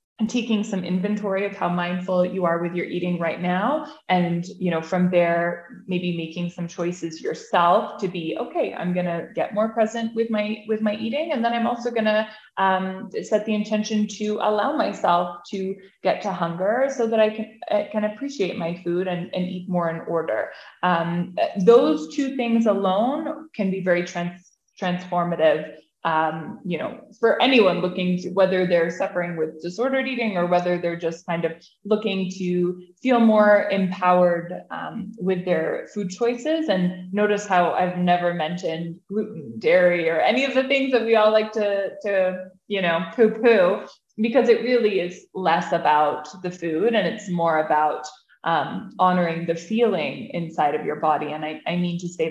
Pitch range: 175-215 Hz